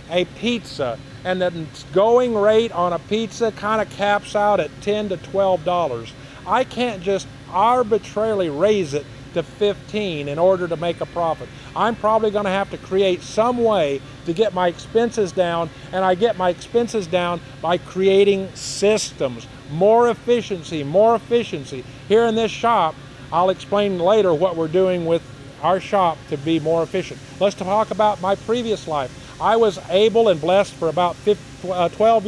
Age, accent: 50-69, American